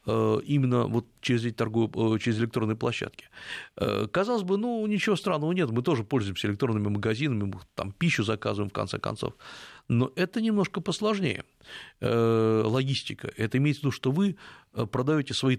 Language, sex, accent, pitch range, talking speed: Russian, male, native, 110-150 Hz, 145 wpm